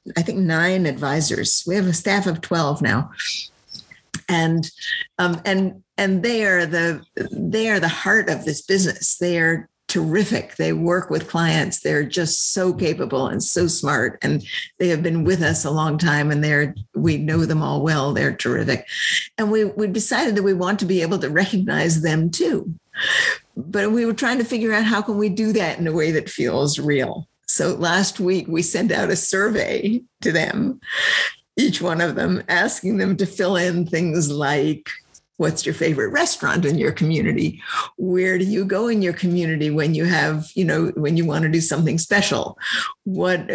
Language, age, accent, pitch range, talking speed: English, 50-69, American, 165-205 Hz, 190 wpm